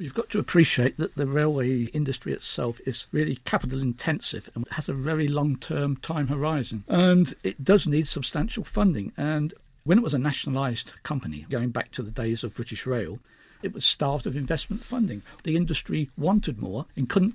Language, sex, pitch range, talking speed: English, male, 135-170 Hz, 180 wpm